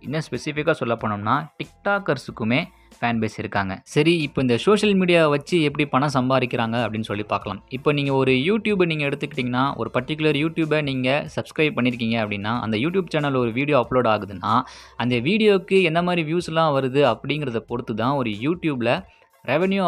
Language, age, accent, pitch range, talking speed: Tamil, 20-39, native, 120-160 Hz, 155 wpm